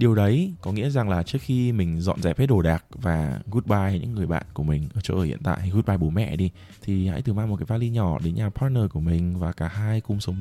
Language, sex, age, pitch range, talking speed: Vietnamese, male, 20-39, 85-115 Hz, 275 wpm